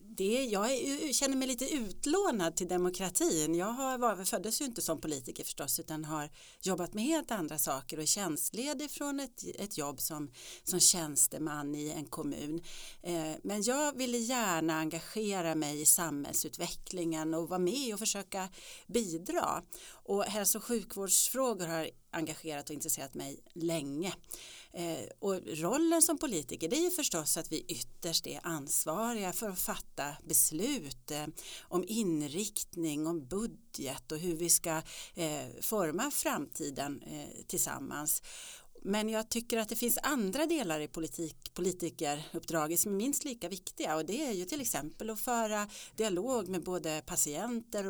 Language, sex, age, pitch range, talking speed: English, female, 40-59, 160-225 Hz, 140 wpm